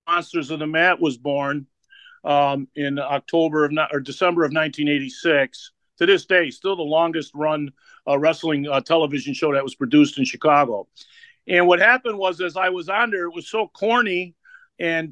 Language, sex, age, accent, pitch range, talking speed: English, male, 50-69, American, 160-195 Hz, 165 wpm